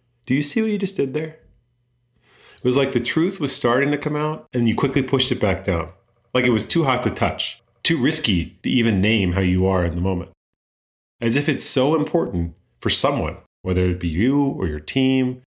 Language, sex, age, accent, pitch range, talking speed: English, male, 30-49, American, 90-120 Hz, 220 wpm